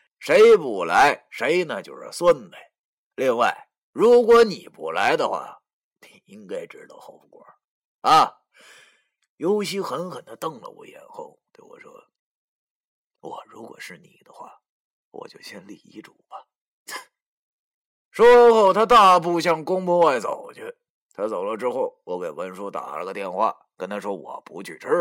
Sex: male